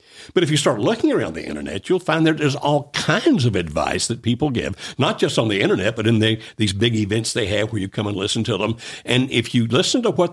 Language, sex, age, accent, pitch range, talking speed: English, male, 60-79, American, 105-145 Hz, 255 wpm